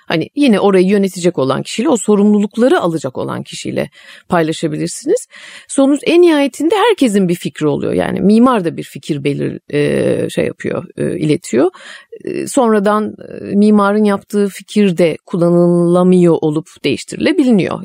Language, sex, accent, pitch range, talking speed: Turkish, female, native, 195-290 Hz, 120 wpm